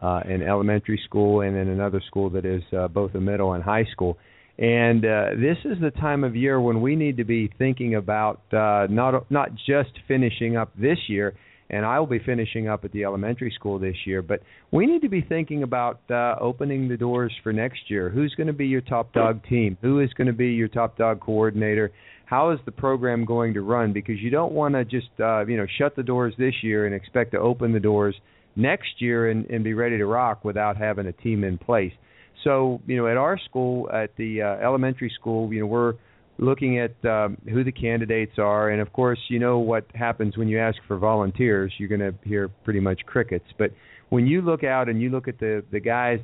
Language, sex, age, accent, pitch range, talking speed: English, male, 50-69, American, 105-125 Hz, 230 wpm